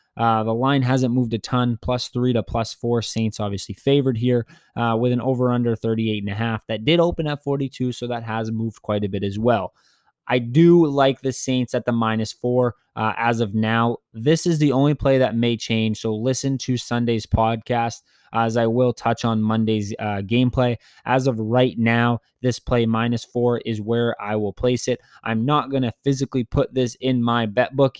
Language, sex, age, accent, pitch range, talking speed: English, male, 20-39, American, 110-125 Hz, 210 wpm